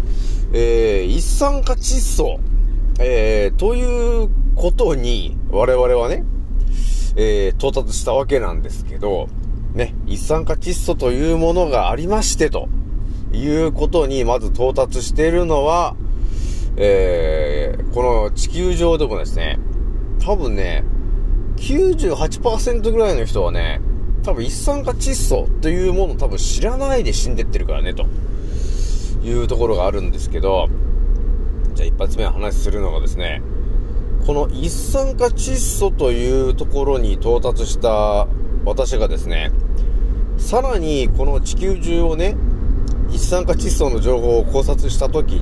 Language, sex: Japanese, male